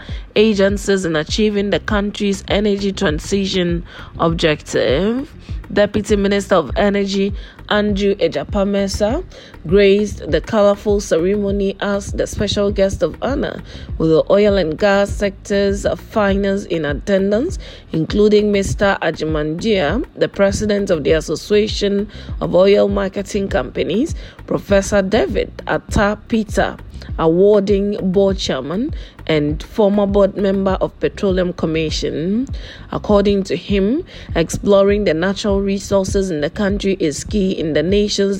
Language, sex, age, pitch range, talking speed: English, female, 20-39, 190-210 Hz, 115 wpm